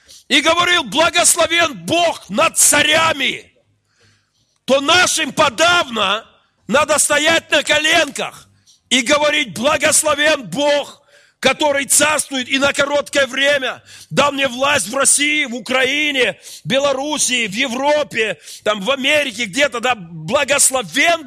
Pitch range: 180-295 Hz